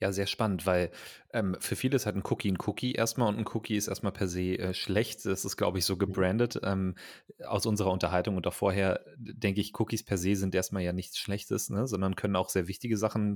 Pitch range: 90-105 Hz